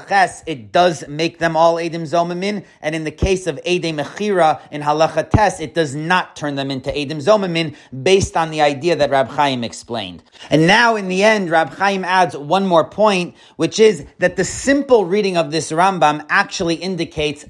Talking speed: 185 wpm